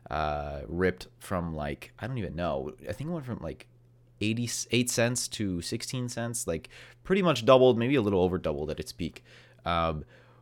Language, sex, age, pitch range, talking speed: English, male, 30-49, 85-115 Hz, 190 wpm